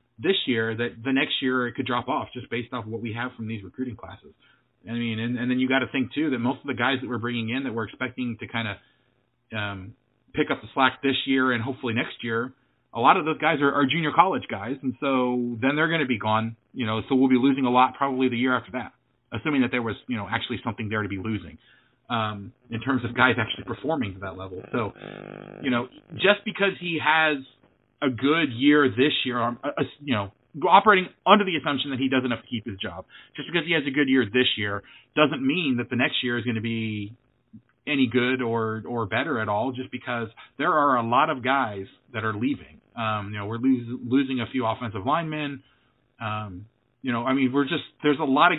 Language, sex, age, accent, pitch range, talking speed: English, male, 30-49, American, 115-135 Hz, 235 wpm